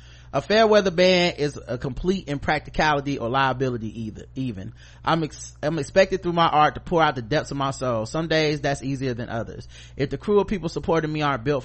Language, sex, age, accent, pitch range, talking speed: English, male, 30-49, American, 125-160 Hz, 215 wpm